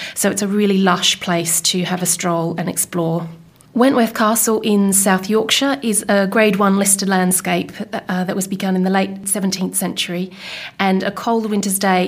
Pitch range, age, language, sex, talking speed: 185-210 Hz, 30-49, English, female, 185 wpm